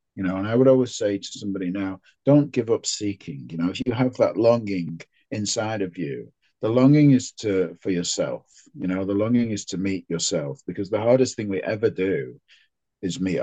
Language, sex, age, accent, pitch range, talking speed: English, male, 40-59, British, 95-120 Hz, 210 wpm